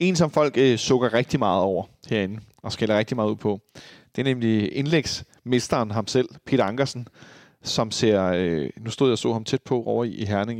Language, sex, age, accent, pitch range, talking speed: Danish, male, 30-49, native, 110-150 Hz, 210 wpm